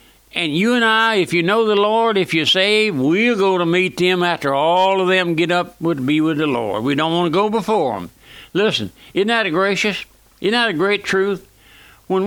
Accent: American